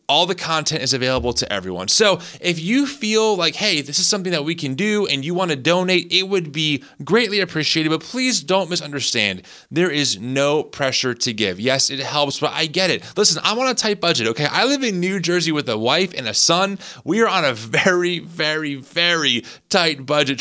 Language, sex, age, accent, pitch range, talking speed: English, male, 20-39, American, 135-180 Hz, 220 wpm